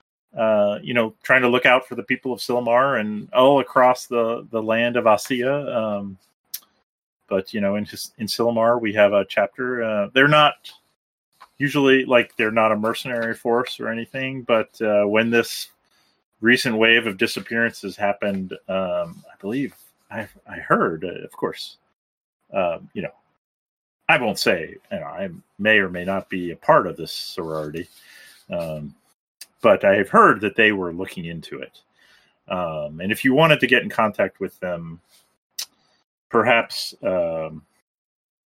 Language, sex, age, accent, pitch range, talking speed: English, male, 30-49, American, 95-125 Hz, 160 wpm